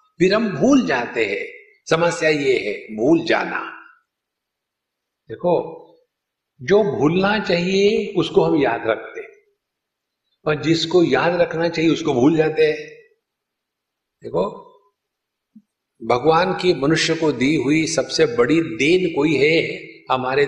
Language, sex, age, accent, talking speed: Hindi, male, 60-79, native, 115 wpm